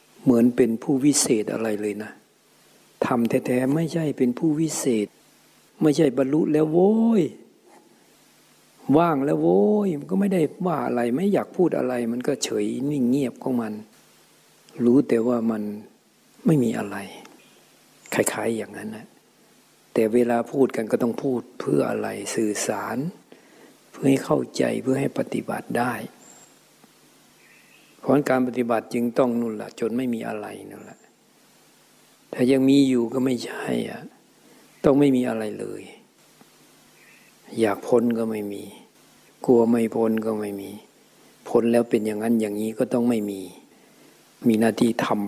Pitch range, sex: 110-130 Hz, male